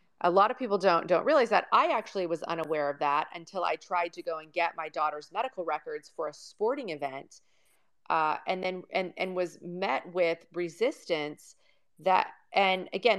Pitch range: 170-215 Hz